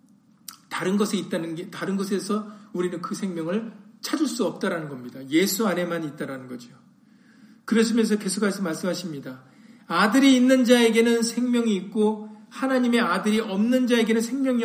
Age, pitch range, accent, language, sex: 40-59, 195-250 Hz, native, Korean, male